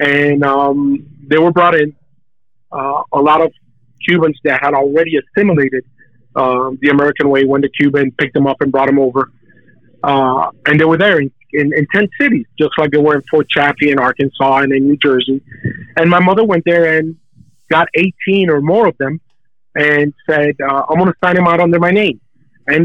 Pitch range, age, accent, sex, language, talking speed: 140-170 Hz, 30-49, American, male, English, 205 wpm